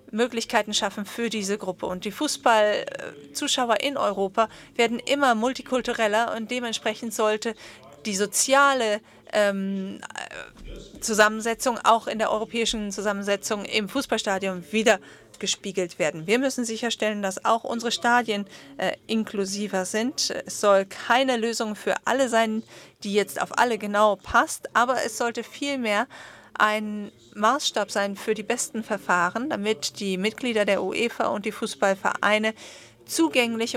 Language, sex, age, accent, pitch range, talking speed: English, female, 40-59, German, 200-235 Hz, 130 wpm